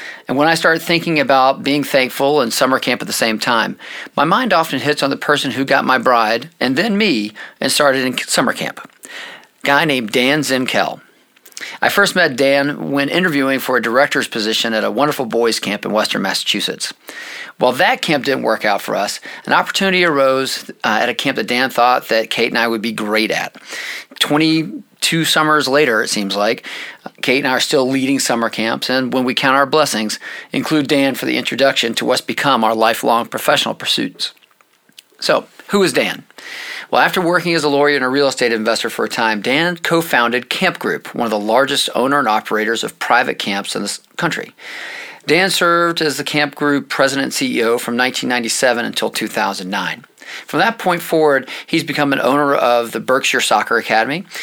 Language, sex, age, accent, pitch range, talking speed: English, male, 40-59, American, 120-155 Hz, 195 wpm